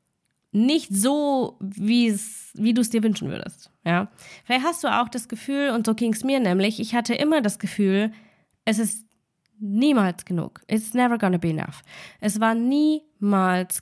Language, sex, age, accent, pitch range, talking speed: German, female, 20-39, German, 190-235 Hz, 165 wpm